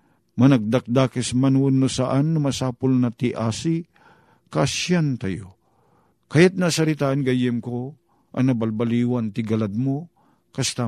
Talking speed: 115 wpm